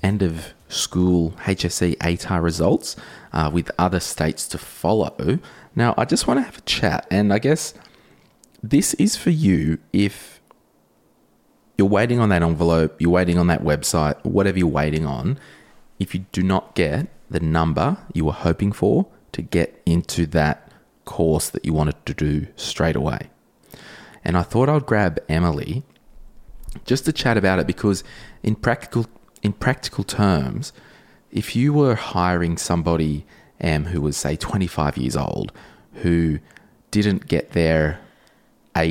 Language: English